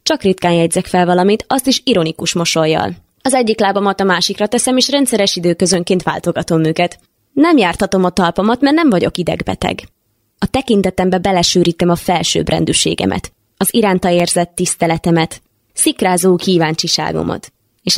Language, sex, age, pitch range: Hungarian, female, 20-39, 165-195 Hz